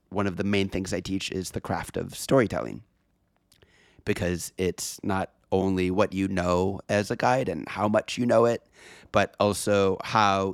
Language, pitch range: English, 95-130 Hz